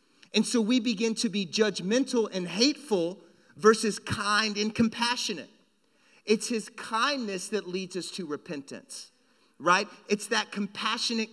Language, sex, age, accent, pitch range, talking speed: English, male, 40-59, American, 195-245 Hz, 130 wpm